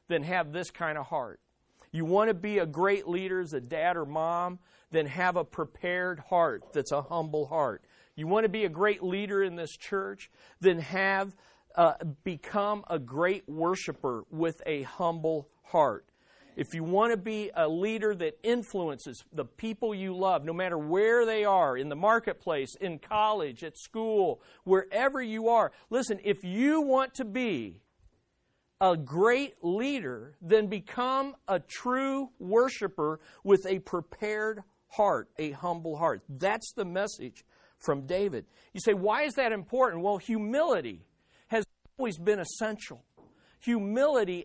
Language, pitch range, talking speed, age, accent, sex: English, 170-225 Hz, 155 wpm, 50-69, American, male